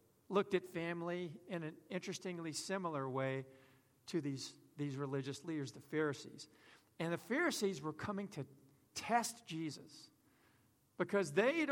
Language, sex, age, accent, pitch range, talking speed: English, male, 50-69, American, 130-185 Hz, 135 wpm